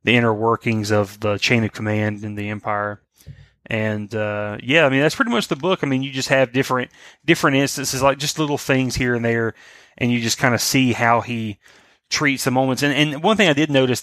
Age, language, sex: 30-49, English, male